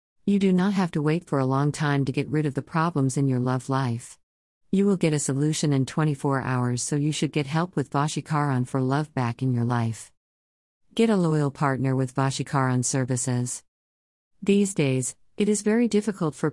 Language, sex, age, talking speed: English, female, 50-69, 200 wpm